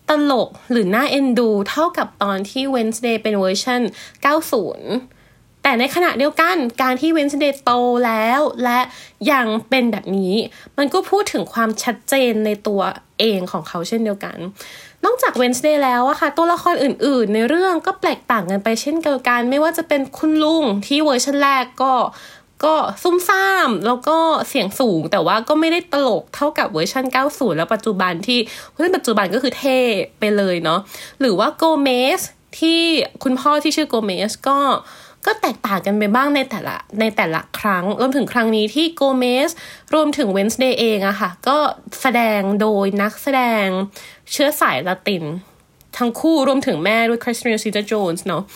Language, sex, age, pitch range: Thai, female, 20-39, 215-290 Hz